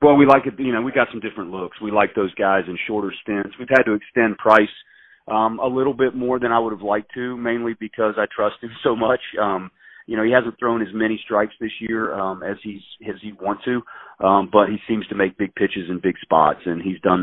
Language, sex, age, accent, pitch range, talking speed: English, male, 40-59, American, 90-105 Hz, 255 wpm